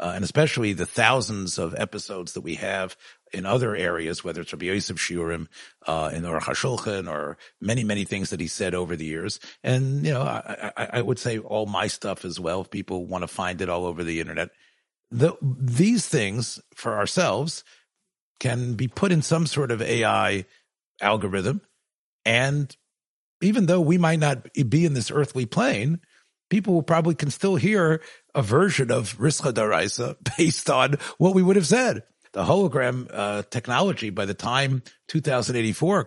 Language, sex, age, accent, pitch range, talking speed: English, male, 50-69, American, 110-155 Hz, 175 wpm